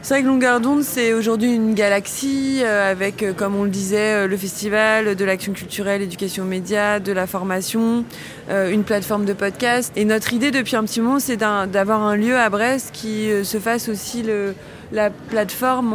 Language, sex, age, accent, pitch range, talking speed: French, female, 20-39, French, 195-220 Hz, 190 wpm